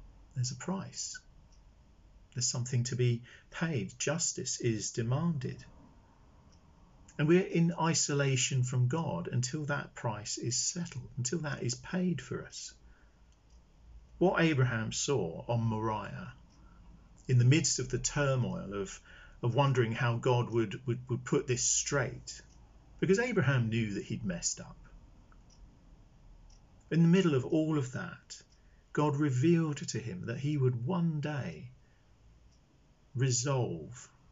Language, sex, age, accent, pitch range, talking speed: English, male, 50-69, British, 120-165 Hz, 130 wpm